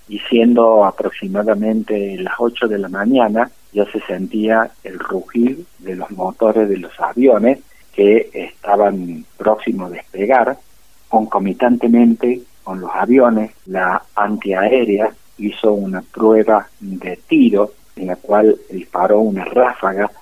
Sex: male